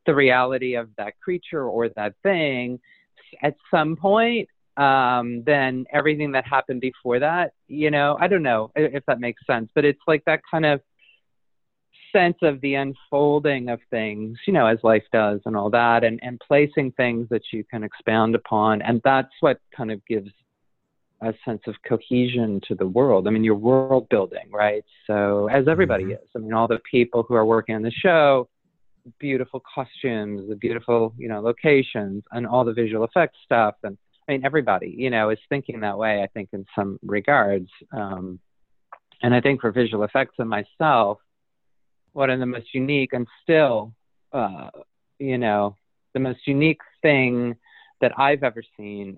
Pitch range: 110-135 Hz